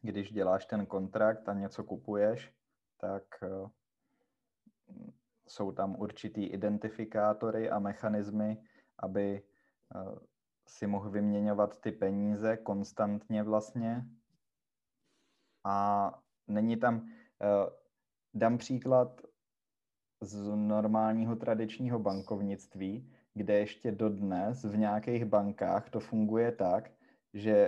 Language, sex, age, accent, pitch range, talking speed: Czech, male, 20-39, native, 100-110 Hz, 90 wpm